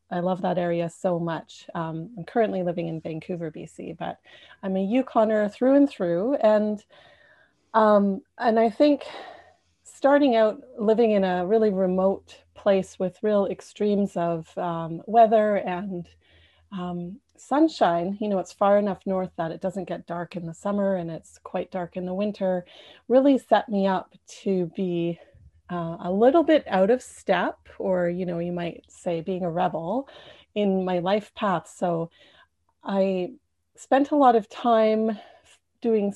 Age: 30-49